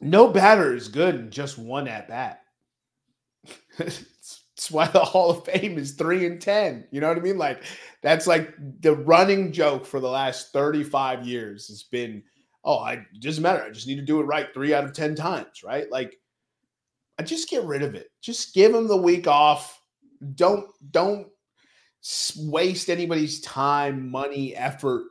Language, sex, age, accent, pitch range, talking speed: English, male, 30-49, American, 125-175 Hz, 180 wpm